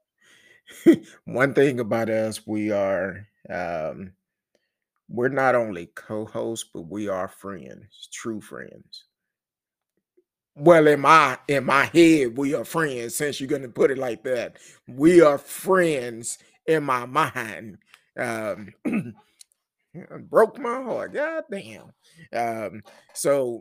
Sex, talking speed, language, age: male, 120 wpm, English, 30-49